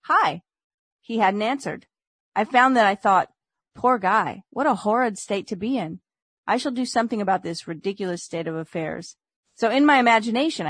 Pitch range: 195-240 Hz